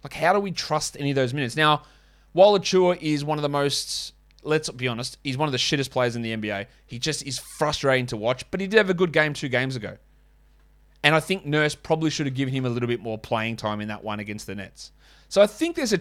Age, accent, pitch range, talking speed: 20-39, Australian, 120-165 Hz, 265 wpm